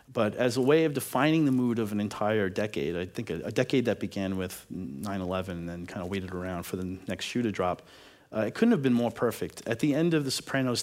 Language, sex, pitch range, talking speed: English, male, 100-125 Hz, 255 wpm